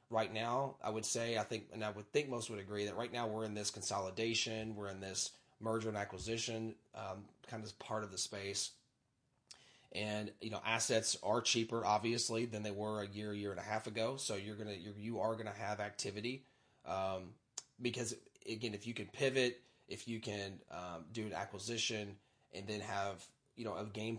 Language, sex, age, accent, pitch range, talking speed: English, male, 30-49, American, 100-115 Hz, 200 wpm